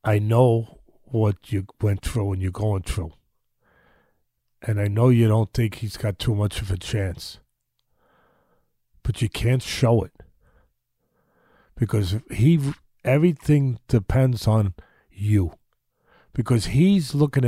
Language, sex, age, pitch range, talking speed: English, male, 50-69, 110-150 Hz, 125 wpm